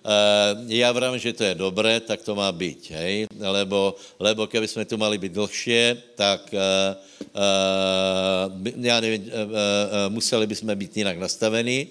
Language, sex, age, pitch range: Slovak, male, 60-79, 95-110 Hz